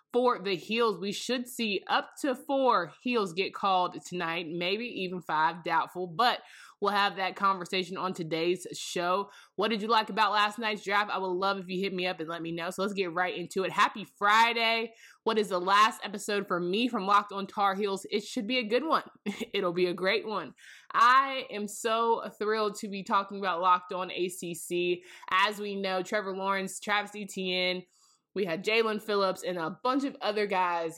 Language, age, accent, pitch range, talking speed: English, 20-39, American, 185-230 Hz, 200 wpm